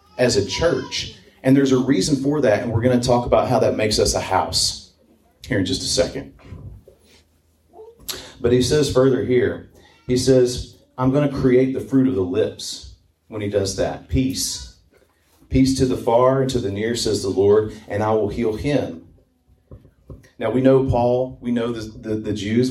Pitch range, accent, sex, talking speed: 105-135 Hz, American, male, 195 wpm